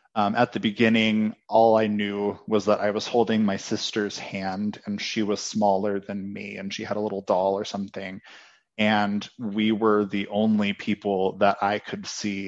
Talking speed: 190 wpm